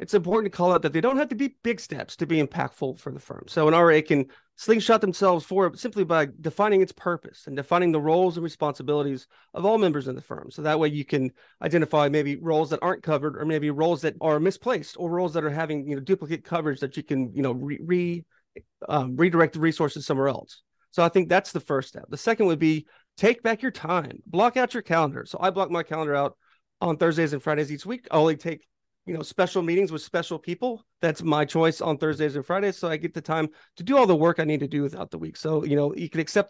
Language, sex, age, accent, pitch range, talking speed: English, male, 30-49, American, 150-190 Hz, 250 wpm